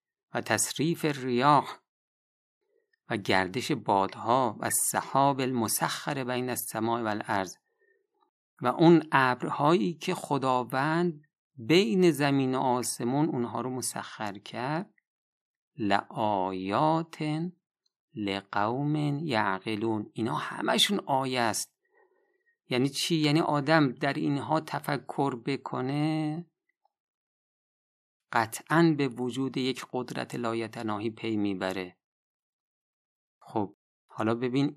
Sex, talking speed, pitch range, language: male, 90 wpm, 115-165 Hz, Persian